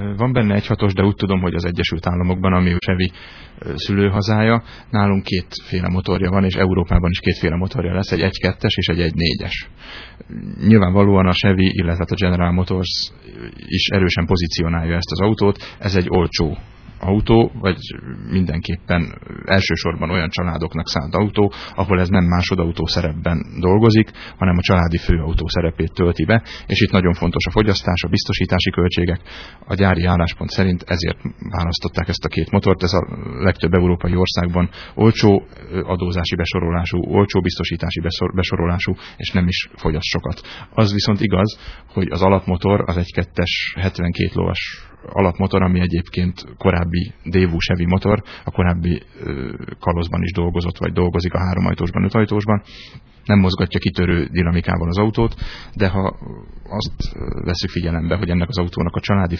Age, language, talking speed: 30-49, Hungarian, 145 wpm